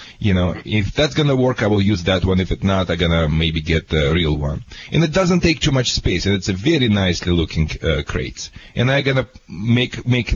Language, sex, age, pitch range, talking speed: English, male, 30-49, 90-125 Hz, 255 wpm